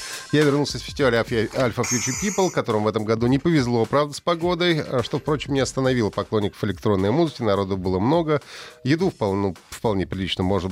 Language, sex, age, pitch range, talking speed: Russian, male, 30-49, 95-130 Hz, 180 wpm